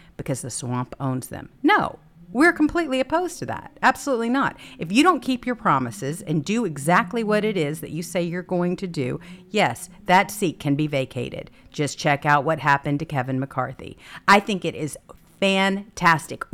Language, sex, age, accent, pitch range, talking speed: English, female, 50-69, American, 140-200 Hz, 185 wpm